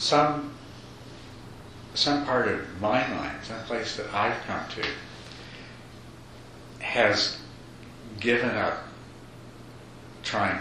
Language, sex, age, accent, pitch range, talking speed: English, male, 70-89, American, 100-125 Hz, 90 wpm